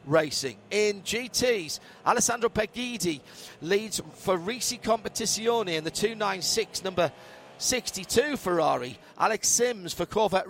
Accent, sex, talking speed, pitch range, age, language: British, male, 110 wpm, 160-210 Hz, 40-59, English